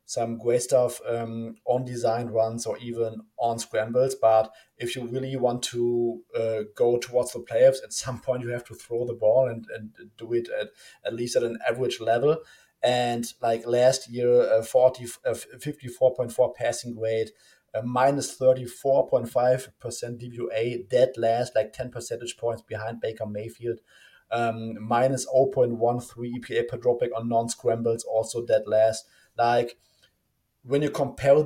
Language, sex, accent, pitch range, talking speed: English, male, German, 115-130 Hz, 155 wpm